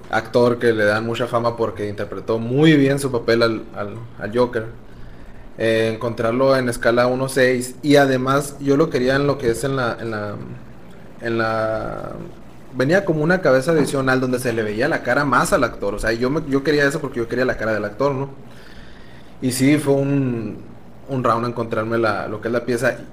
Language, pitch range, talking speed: Spanish, 110-130 Hz, 200 wpm